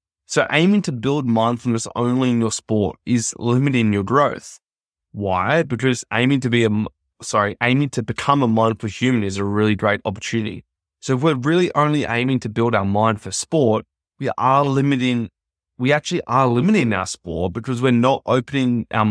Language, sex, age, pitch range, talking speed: English, male, 20-39, 105-130 Hz, 180 wpm